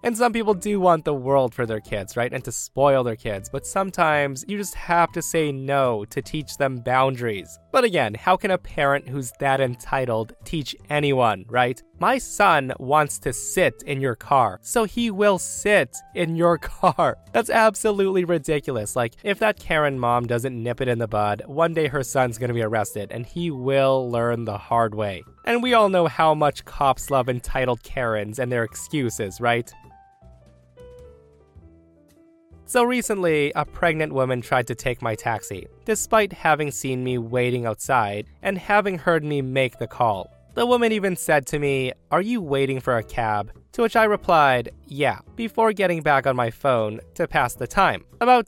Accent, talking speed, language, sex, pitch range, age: American, 185 wpm, English, male, 115-175 Hz, 20-39